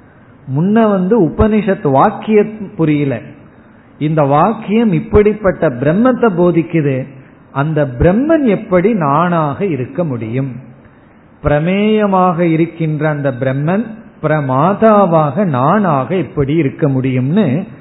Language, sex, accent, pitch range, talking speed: Tamil, male, native, 135-180 Hz, 85 wpm